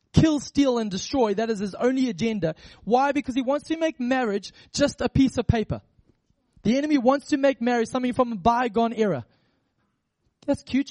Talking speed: 185 wpm